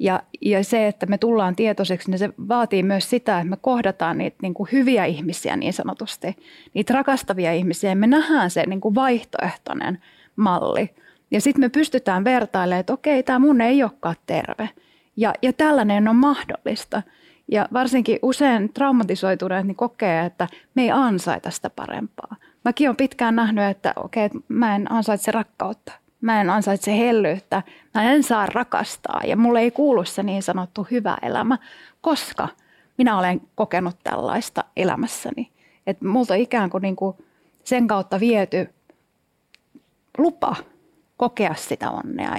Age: 30-49